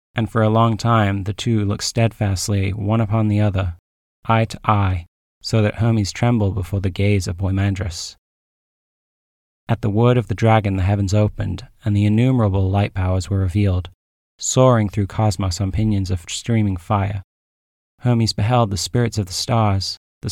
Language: English